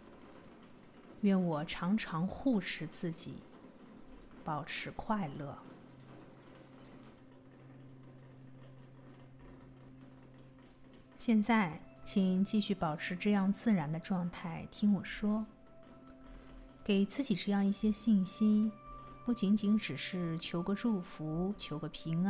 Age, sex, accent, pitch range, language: 30-49, female, native, 145-215 Hz, Chinese